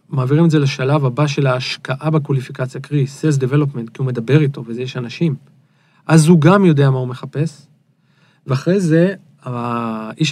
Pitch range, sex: 135-165 Hz, male